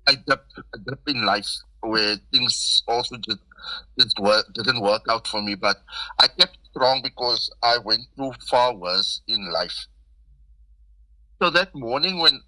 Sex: male